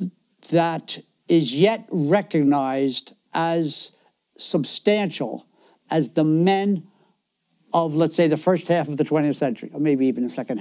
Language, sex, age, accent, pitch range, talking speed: English, male, 60-79, American, 145-185 Hz, 135 wpm